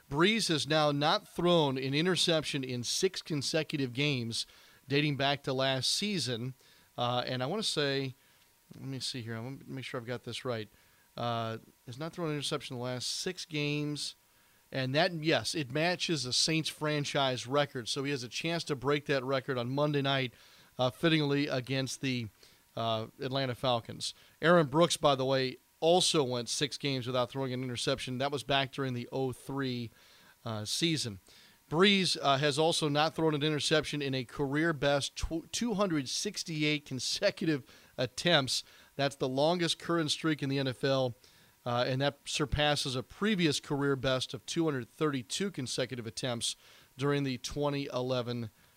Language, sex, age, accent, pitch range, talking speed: English, male, 40-59, American, 130-160 Hz, 160 wpm